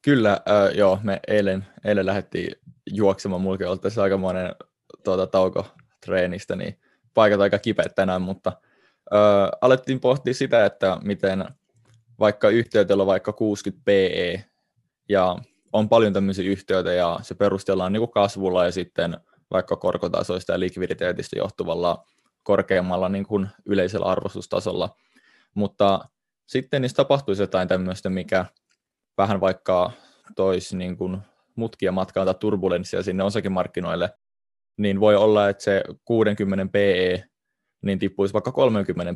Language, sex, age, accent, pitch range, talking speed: Finnish, male, 20-39, native, 95-105 Hz, 125 wpm